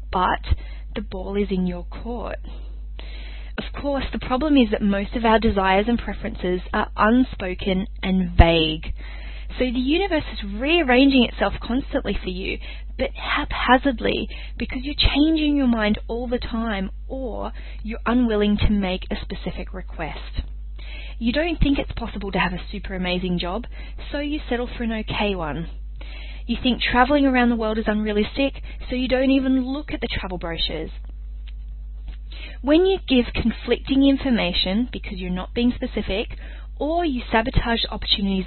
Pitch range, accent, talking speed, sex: 180-250 Hz, Australian, 155 wpm, female